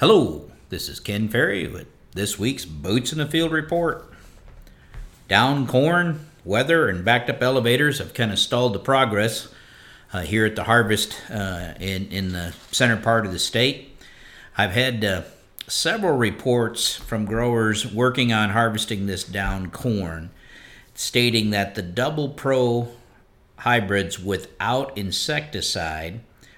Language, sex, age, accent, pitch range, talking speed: English, male, 50-69, American, 95-120 Hz, 140 wpm